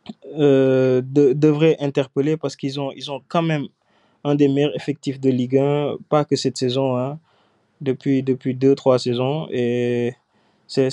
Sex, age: male, 20-39